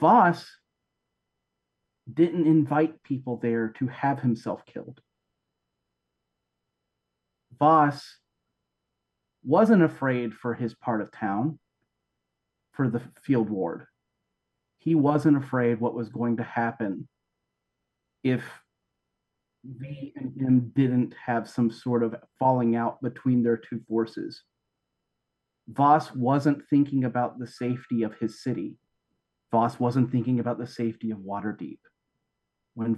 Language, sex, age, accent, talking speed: English, male, 40-59, American, 110 wpm